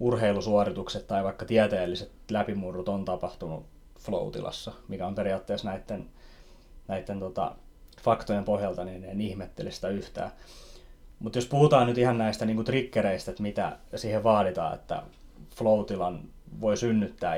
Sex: male